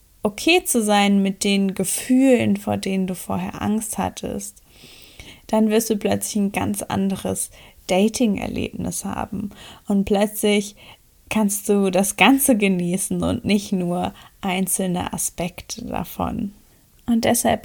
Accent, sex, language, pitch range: German, female, German, 180-210 Hz